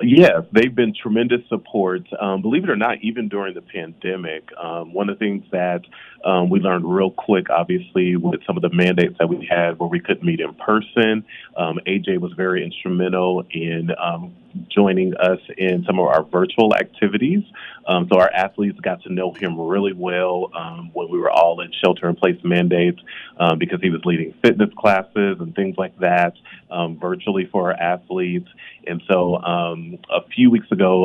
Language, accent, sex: English, American, male